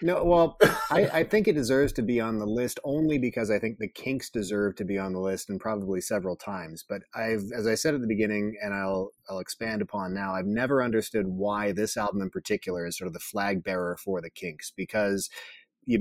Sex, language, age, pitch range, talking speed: male, English, 30-49, 100-125 Hz, 230 wpm